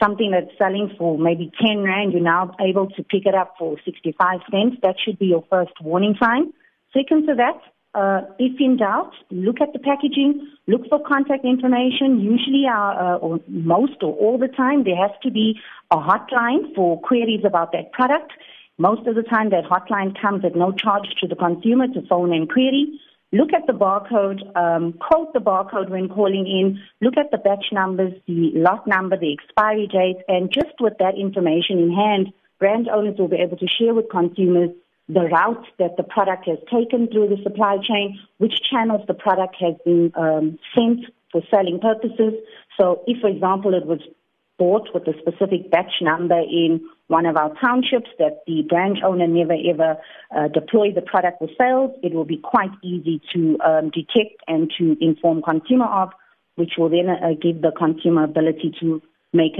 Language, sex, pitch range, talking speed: English, female, 170-225 Hz, 190 wpm